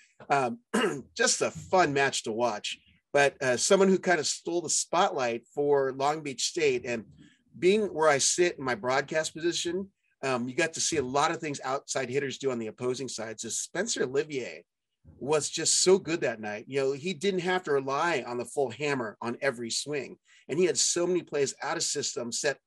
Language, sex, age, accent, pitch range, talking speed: English, male, 40-59, American, 120-165 Hz, 205 wpm